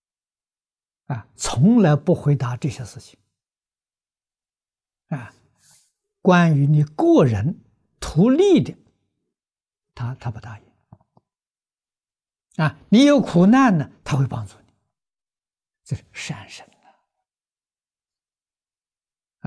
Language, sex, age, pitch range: Chinese, male, 60-79, 120-180 Hz